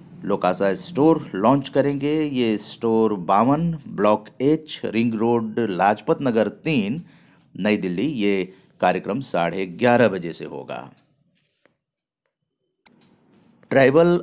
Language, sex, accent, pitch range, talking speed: Hindi, male, native, 95-150 Hz, 100 wpm